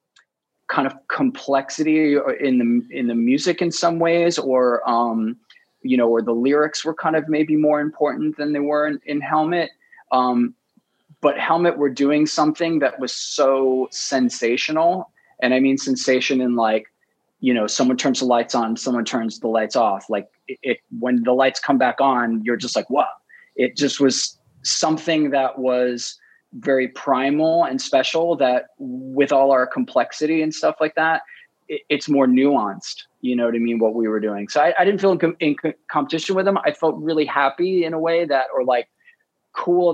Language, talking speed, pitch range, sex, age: English, 185 wpm, 125-165 Hz, male, 20-39